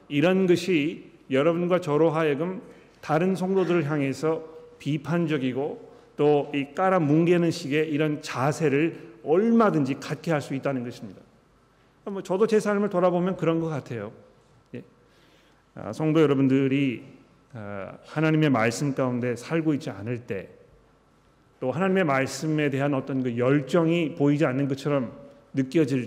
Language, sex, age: Korean, male, 40-59